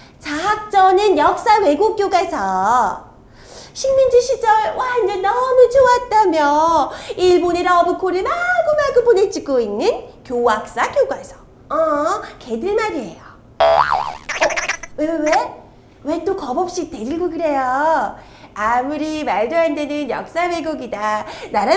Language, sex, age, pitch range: Korean, female, 30-49, 290-395 Hz